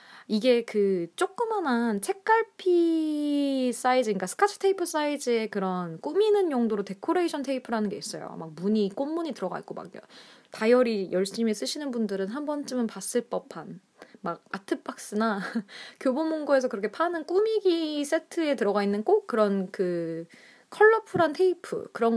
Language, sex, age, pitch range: Korean, female, 20-39, 200-315 Hz